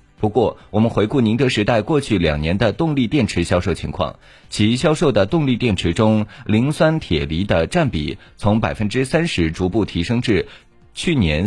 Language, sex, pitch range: Chinese, male, 95-130 Hz